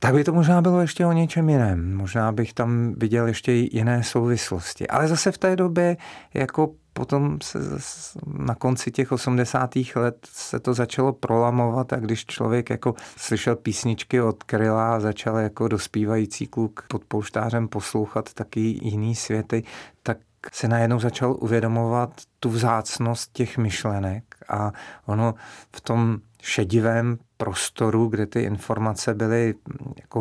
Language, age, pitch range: Czech, 40-59, 110-120 Hz